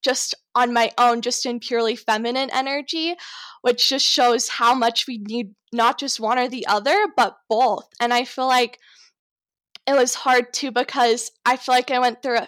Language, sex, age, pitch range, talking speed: English, female, 10-29, 240-275 Hz, 190 wpm